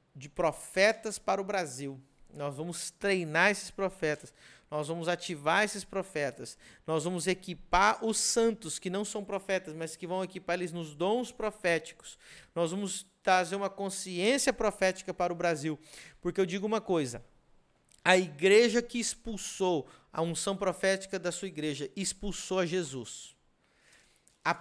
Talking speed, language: 145 wpm, Portuguese